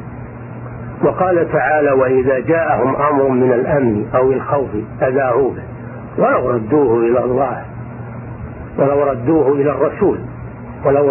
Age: 50-69